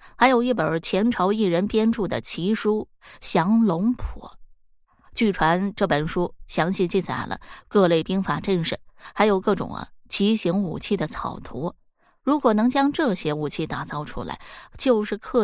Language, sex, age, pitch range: Chinese, female, 20-39, 180-230 Hz